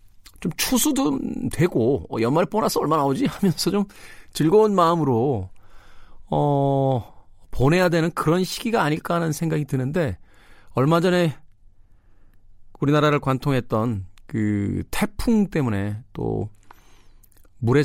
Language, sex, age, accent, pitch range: Korean, male, 40-59, native, 95-135 Hz